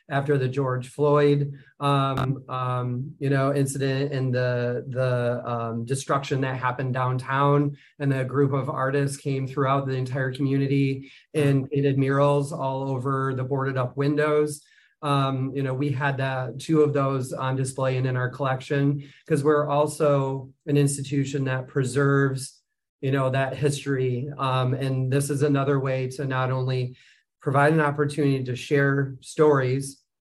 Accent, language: American, English